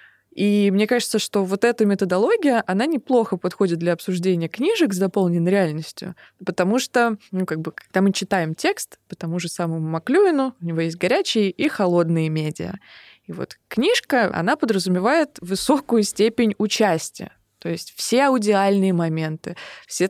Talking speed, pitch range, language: 150 wpm, 180-230 Hz, Russian